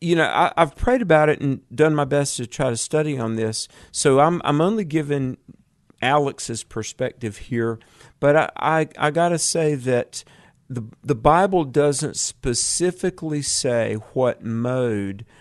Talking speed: 155 wpm